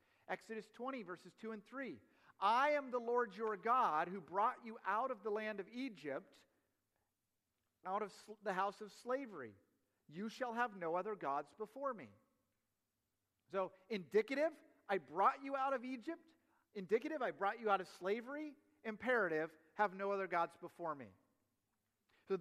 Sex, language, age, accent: male, English, 40-59, American